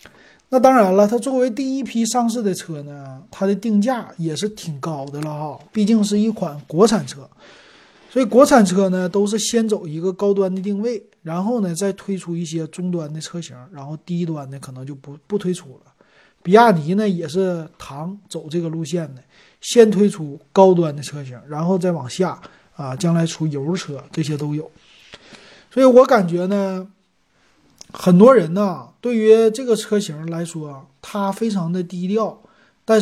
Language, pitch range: Chinese, 155-210 Hz